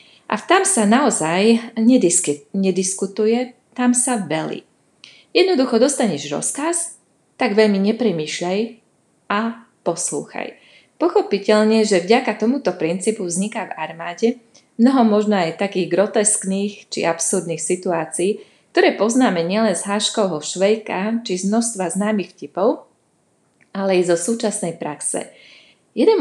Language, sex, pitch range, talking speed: Slovak, female, 180-235 Hz, 110 wpm